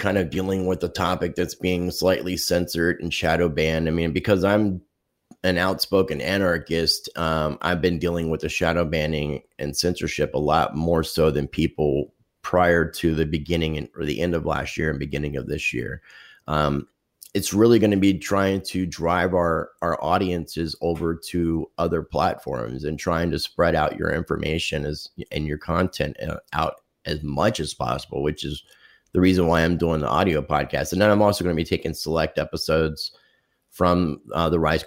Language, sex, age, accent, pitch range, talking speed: English, male, 30-49, American, 75-95 Hz, 185 wpm